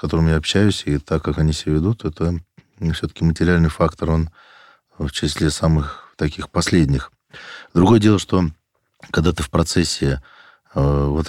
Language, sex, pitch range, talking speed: Russian, male, 75-85 Hz, 155 wpm